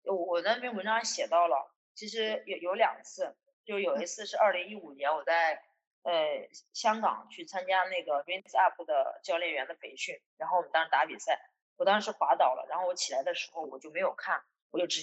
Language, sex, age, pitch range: Chinese, female, 20-39, 170-255 Hz